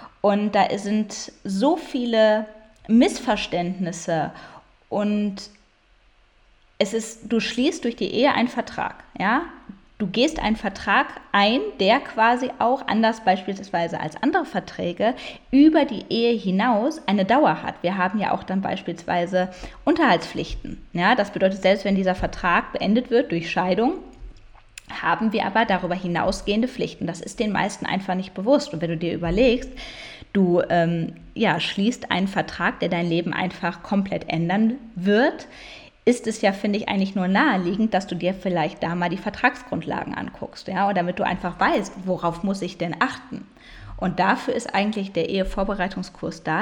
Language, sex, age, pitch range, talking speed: German, female, 20-39, 180-230 Hz, 155 wpm